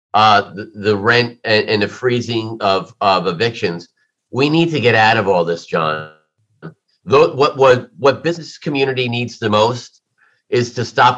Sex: male